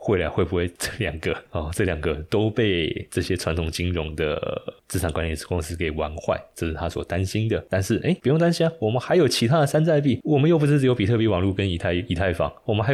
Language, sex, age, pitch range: Chinese, male, 20-39, 80-105 Hz